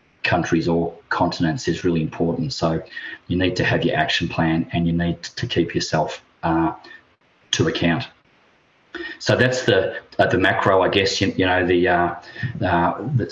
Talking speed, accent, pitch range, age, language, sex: 170 wpm, Australian, 85-100 Hz, 30-49, English, male